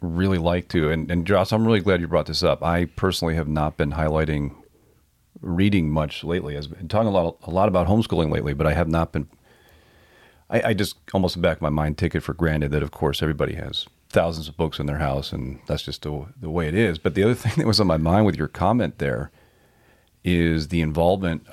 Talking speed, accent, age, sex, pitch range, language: 230 wpm, American, 40-59, male, 75-90 Hz, English